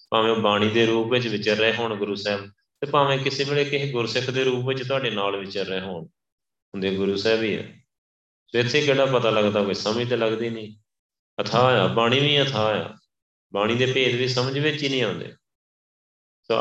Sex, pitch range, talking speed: male, 95-115 Hz, 195 wpm